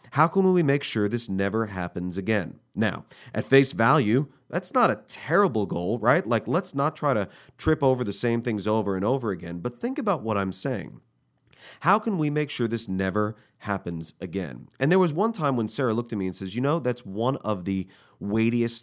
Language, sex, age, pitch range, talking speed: English, male, 30-49, 100-140 Hz, 215 wpm